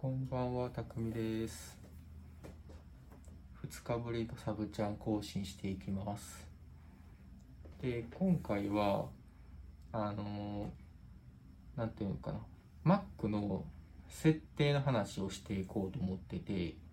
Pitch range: 85-125 Hz